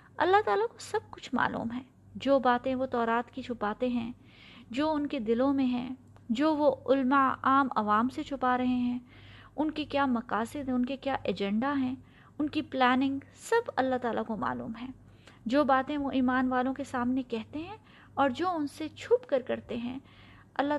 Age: 20-39